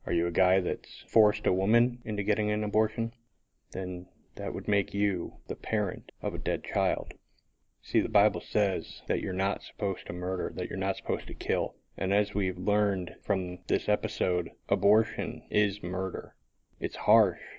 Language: English